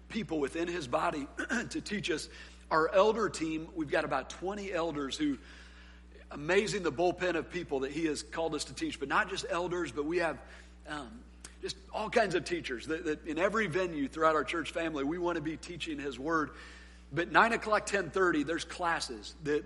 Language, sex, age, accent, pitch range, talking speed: English, male, 50-69, American, 145-180 Hz, 195 wpm